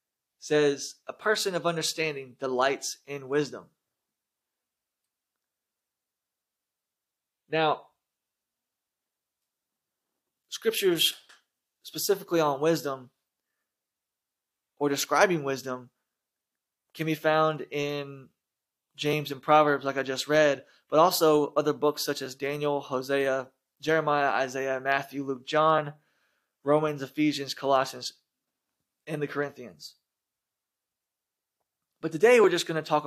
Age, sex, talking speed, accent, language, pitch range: 20-39, male, 95 wpm, American, English, 135-155 Hz